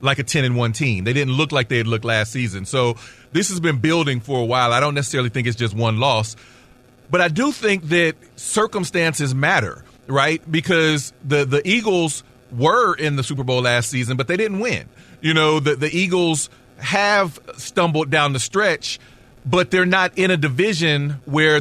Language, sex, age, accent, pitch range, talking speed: English, male, 40-59, American, 125-165 Hz, 195 wpm